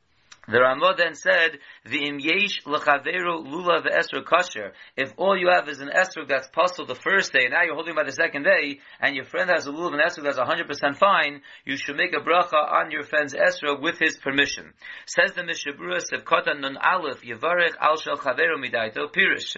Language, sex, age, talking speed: English, male, 40-59, 200 wpm